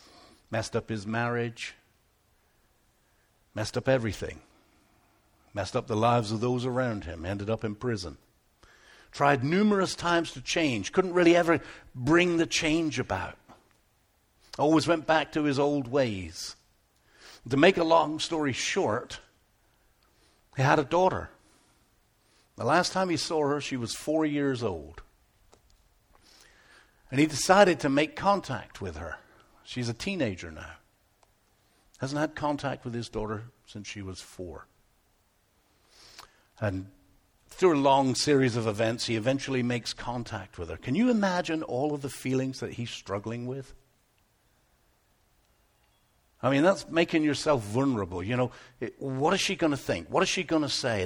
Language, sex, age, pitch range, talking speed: English, male, 60-79, 110-155 Hz, 145 wpm